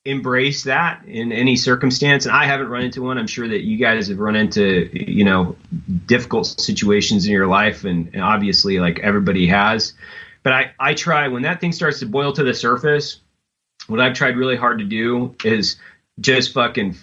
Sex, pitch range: male, 100-135 Hz